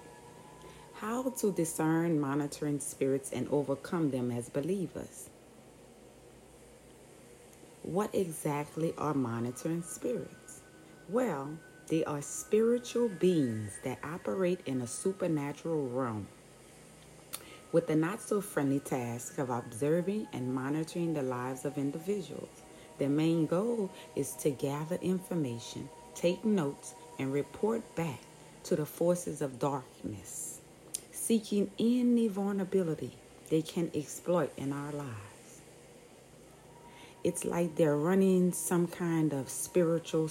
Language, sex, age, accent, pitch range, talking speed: English, female, 30-49, American, 140-185 Hz, 105 wpm